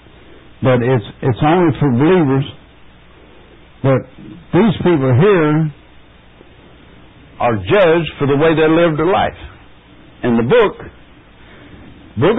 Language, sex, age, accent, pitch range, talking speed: English, male, 60-79, American, 100-155 Hz, 110 wpm